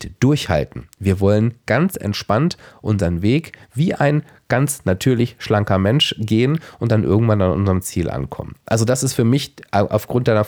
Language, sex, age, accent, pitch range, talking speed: German, male, 40-59, German, 100-135 Hz, 160 wpm